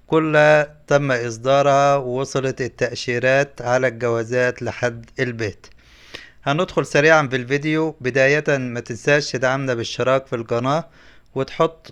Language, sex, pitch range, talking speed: Arabic, male, 125-145 Hz, 105 wpm